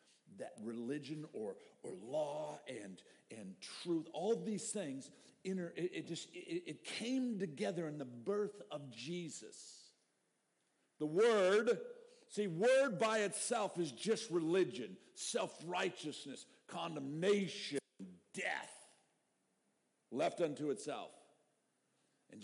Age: 50-69